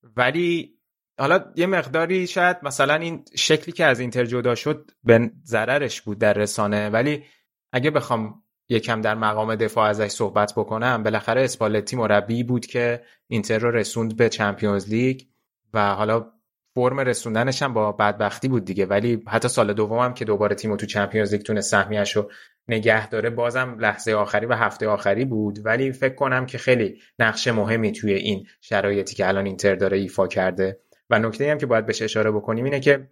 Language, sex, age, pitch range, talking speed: Persian, male, 20-39, 105-130 Hz, 170 wpm